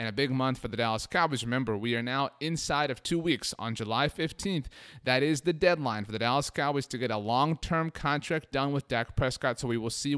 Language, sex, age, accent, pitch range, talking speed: English, male, 30-49, American, 115-140 Hz, 235 wpm